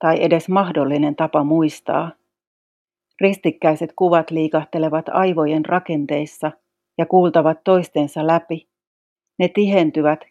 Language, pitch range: Finnish, 150-170 Hz